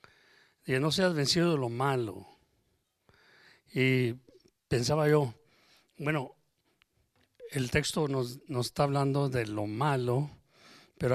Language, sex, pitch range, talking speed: English, male, 130-165 Hz, 115 wpm